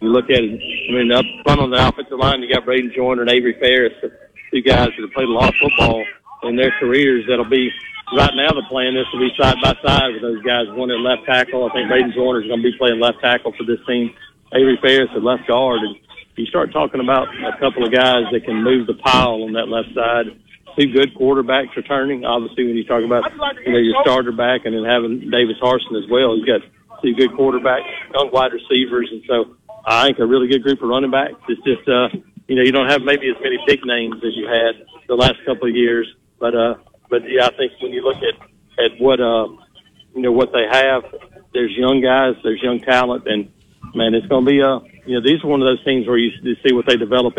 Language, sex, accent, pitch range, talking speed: English, male, American, 120-135 Hz, 245 wpm